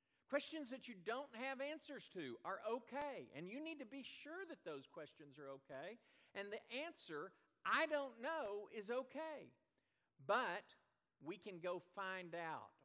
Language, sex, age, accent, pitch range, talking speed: English, male, 50-69, American, 145-240 Hz, 160 wpm